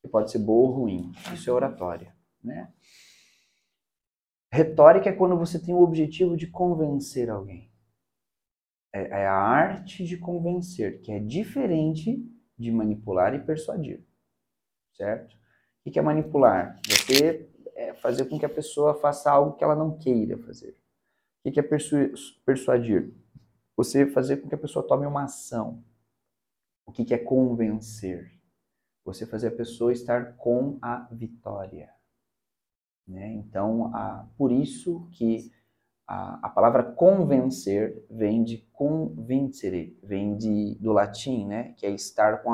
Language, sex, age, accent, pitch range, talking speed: Portuguese, male, 40-59, Brazilian, 110-145 Hz, 140 wpm